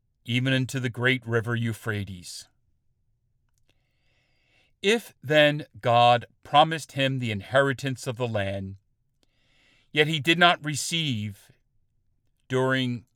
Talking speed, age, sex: 100 wpm, 50-69, male